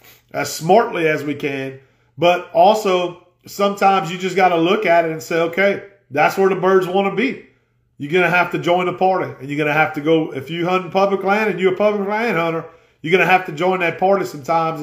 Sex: male